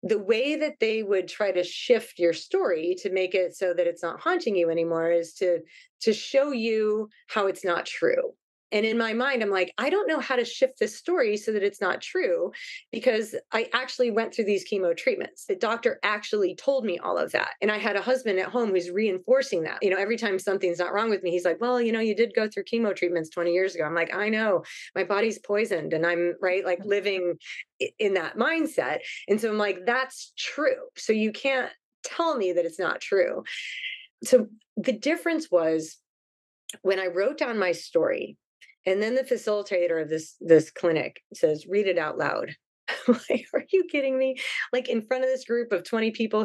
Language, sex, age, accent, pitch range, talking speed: English, female, 30-49, American, 170-250 Hz, 210 wpm